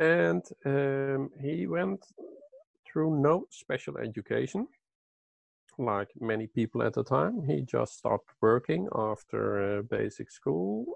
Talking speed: 120 wpm